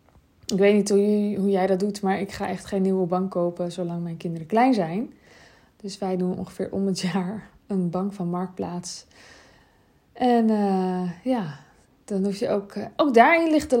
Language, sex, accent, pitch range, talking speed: Dutch, female, Dutch, 185-225 Hz, 185 wpm